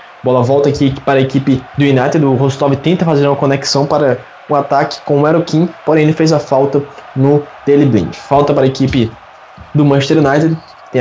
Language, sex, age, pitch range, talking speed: Portuguese, male, 20-39, 130-155 Hz, 200 wpm